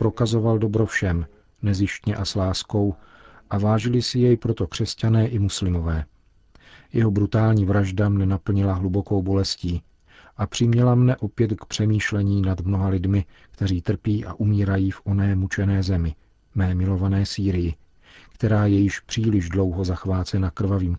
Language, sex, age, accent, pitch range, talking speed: Czech, male, 40-59, native, 95-105 Hz, 140 wpm